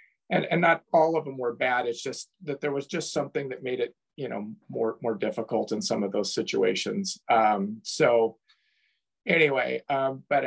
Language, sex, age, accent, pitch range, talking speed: English, male, 40-59, American, 115-150 Hz, 190 wpm